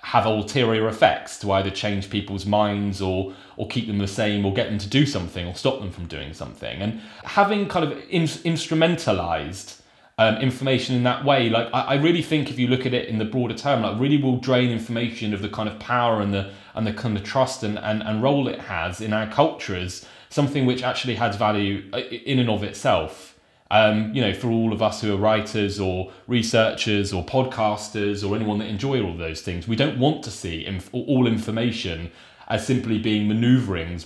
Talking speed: 210 wpm